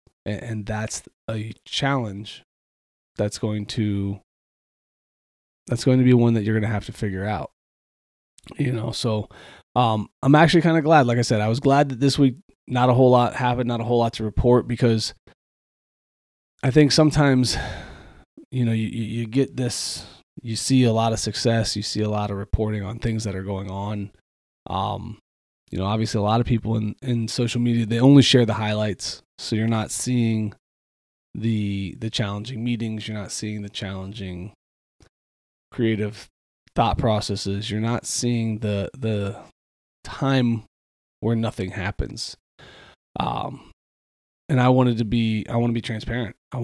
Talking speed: 170 wpm